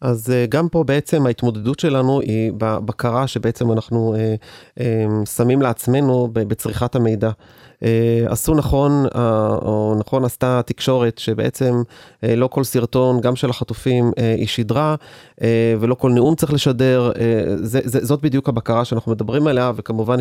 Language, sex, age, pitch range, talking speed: Hebrew, male, 30-49, 115-135 Hz, 155 wpm